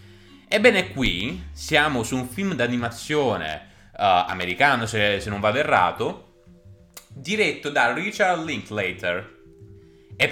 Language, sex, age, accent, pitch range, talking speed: Italian, male, 20-39, native, 95-145 Hz, 105 wpm